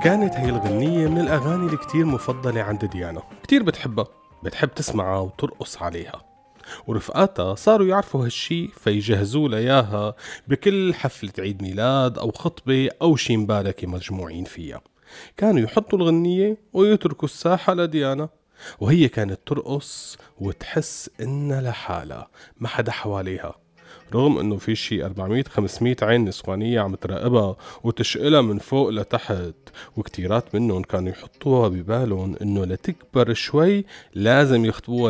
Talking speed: 120 wpm